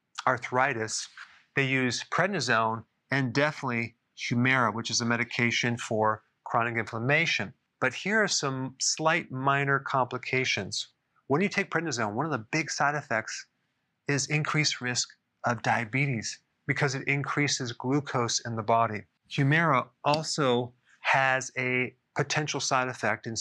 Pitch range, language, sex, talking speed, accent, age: 120-150 Hz, English, male, 130 wpm, American, 30-49